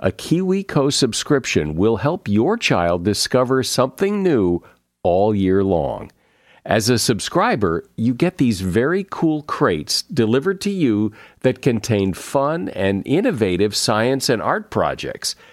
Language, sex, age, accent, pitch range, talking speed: English, male, 50-69, American, 105-135 Hz, 130 wpm